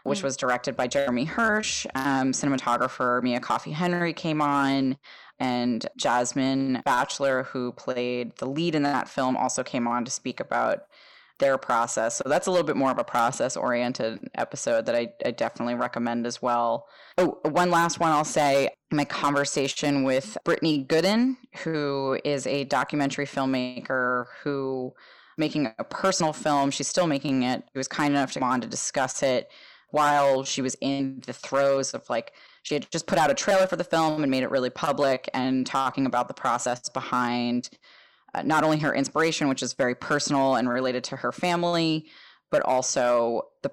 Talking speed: 175 wpm